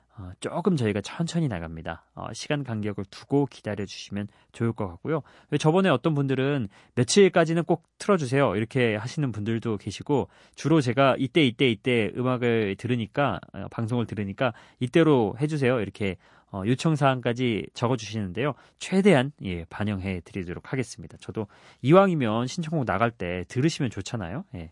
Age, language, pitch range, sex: 30-49, Korean, 100-145 Hz, male